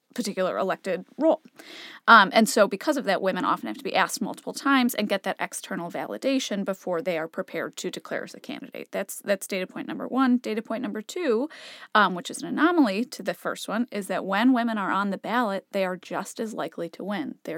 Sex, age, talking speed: female, 30-49, 225 wpm